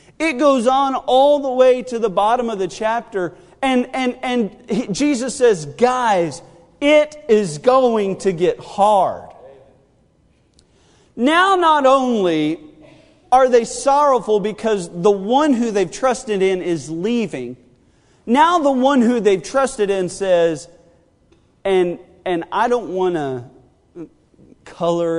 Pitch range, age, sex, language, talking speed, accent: 145-230 Hz, 40-59, male, English, 130 wpm, American